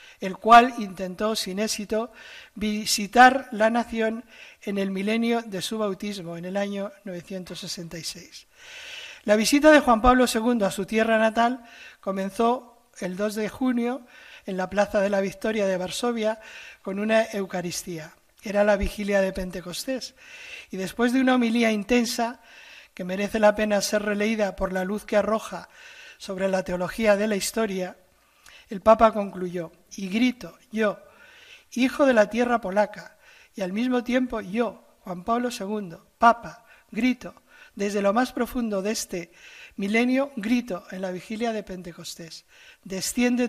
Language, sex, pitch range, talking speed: Spanish, male, 195-245 Hz, 150 wpm